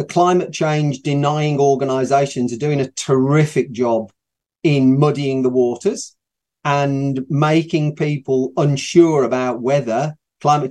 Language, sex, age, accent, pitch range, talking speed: English, male, 40-59, British, 130-170 Hz, 110 wpm